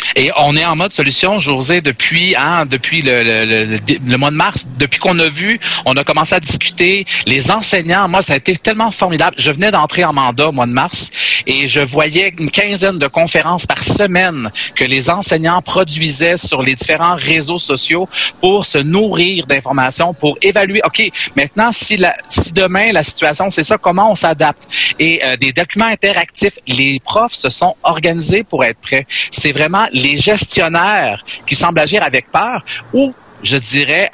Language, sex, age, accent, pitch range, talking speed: French, male, 30-49, Canadian, 140-185 Hz, 185 wpm